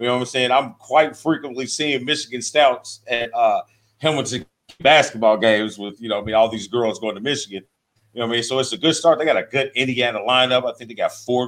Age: 40-59